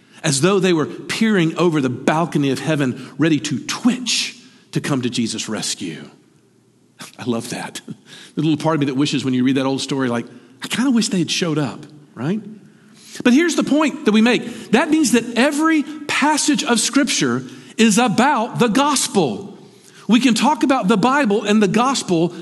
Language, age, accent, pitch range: English, 50-69, American, 180-265 Hz